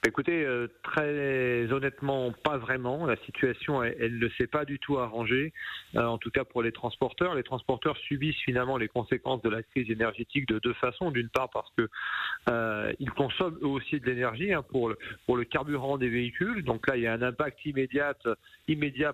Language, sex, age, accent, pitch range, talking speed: French, male, 40-59, French, 120-145 Hz, 185 wpm